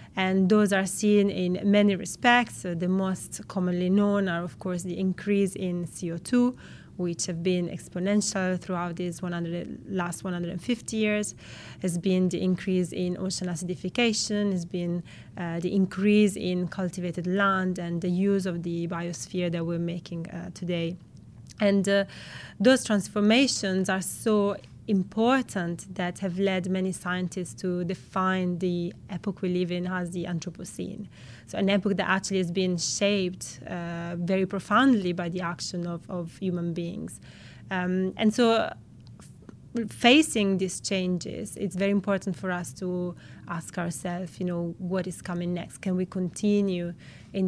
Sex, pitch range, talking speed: female, 175-195 Hz, 150 wpm